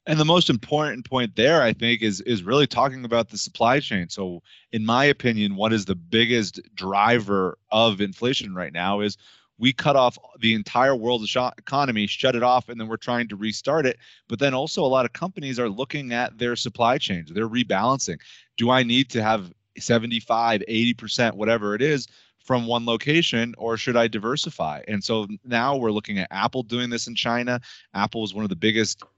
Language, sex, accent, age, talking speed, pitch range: English, male, American, 30-49, 200 wpm, 105-125 Hz